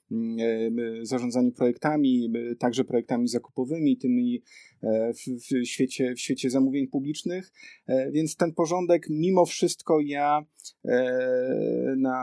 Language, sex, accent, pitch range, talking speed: Polish, male, native, 130-145 Hz, 90 wpm